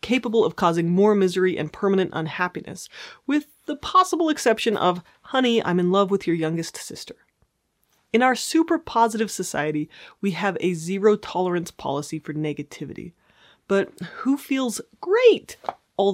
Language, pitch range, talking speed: English, 180-230 Hz, 145 wpm